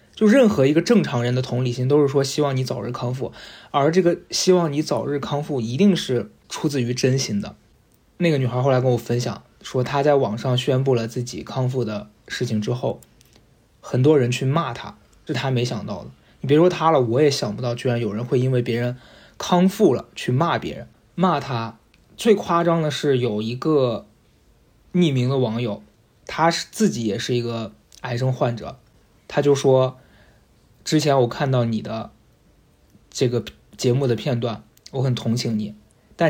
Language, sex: Chinese, male